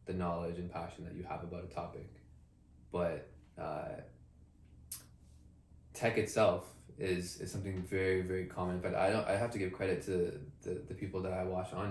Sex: male